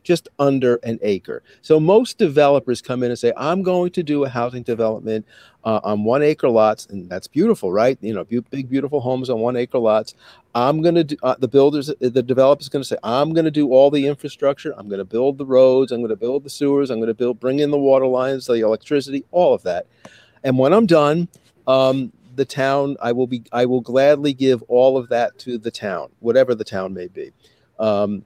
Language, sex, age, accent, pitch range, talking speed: English, male, 50-69, American, 115-145 Hz, 230 wpm